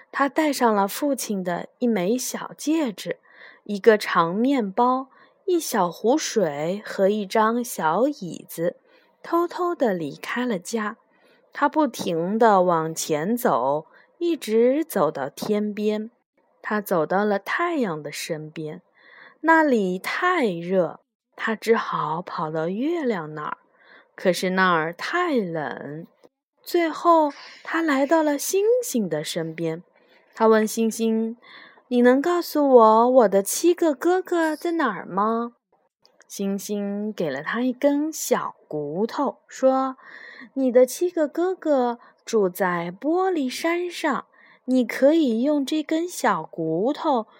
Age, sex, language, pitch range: 20-39, female, Chinese, 205-310 Hz